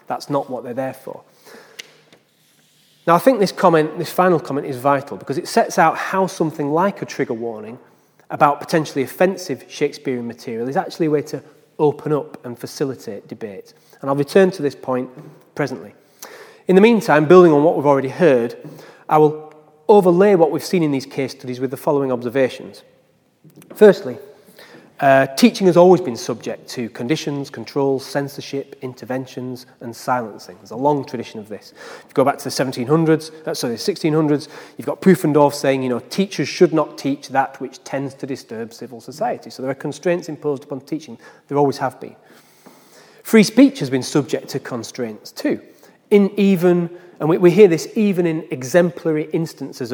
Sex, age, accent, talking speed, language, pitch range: male, 30-49, British, 180 wpm, English, 135-170 Hz